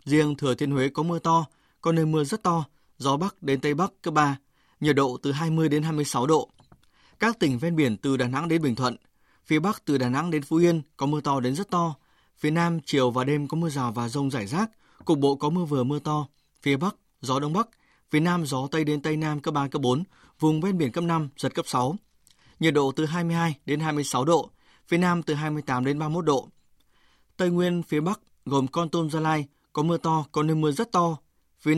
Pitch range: 135-165 Hz